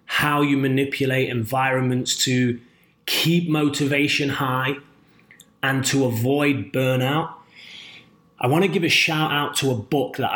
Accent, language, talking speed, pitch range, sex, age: British, English, 135 wpm, 125-150 Hz, male, 20-39